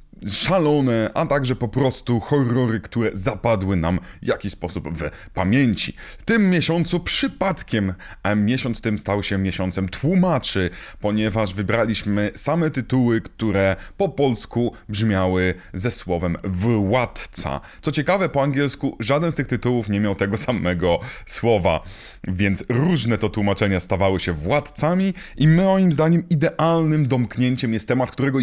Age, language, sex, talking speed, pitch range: 30-49, Polish, male, 135 wpm, 105-155 Hz